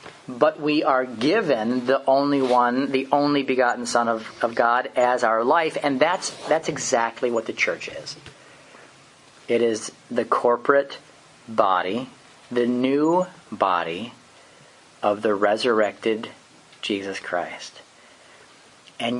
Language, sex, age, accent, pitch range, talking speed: English, male, 40-59, American, 110-140 Hz, 120 wpm